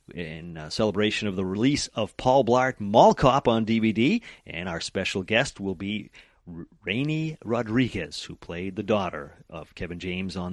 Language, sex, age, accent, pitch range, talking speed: English, male, 40-59, American, 95-155 Hz, 165 wpm